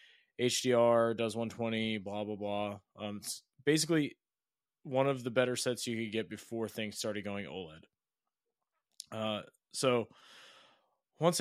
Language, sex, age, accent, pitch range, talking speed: English, male, 20-39, American, 110-125 Hz, 130 wpm